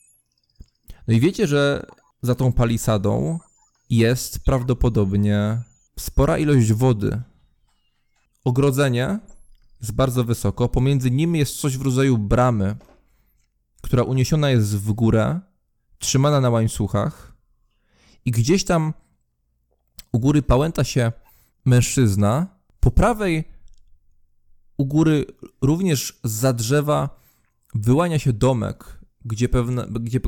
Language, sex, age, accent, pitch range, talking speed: English, male, 20-39, Polish, 110-150 Hz, 105 wpm